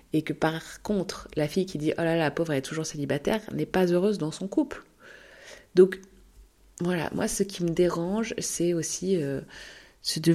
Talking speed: 205 wpm